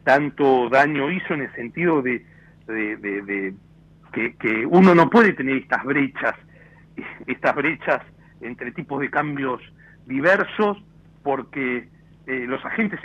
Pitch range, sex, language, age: 125-185 Hz, male, Italian, 60-79